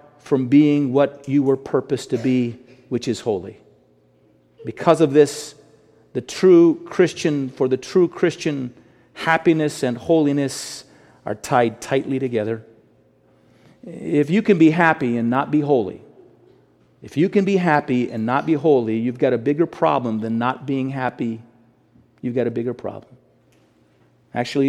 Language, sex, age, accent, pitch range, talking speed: English, male, 40-59, American, 125-150 Hz, 150 wpm